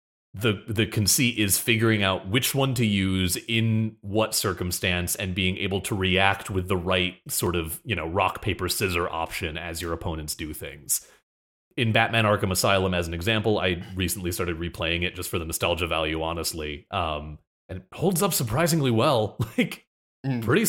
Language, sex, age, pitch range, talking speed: English, male, 30-49, 85-110 Hz, 175 wpm